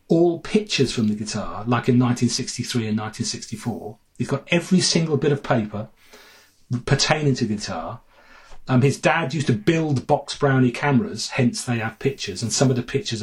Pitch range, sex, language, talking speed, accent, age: 120-150 Hz, male, English, 170 wpm, British, 40-59